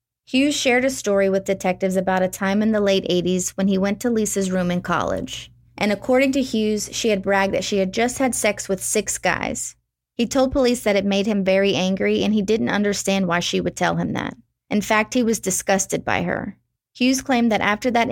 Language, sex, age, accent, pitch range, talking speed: English, female, 30-49, American, 185-220 Hz, 225 wpm